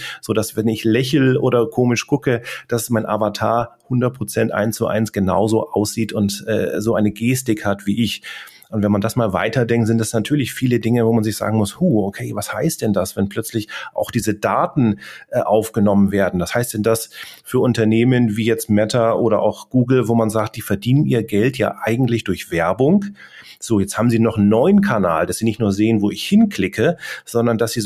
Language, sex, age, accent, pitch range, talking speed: German, male, 30-49, German, 105-125 Hz, 210 wpm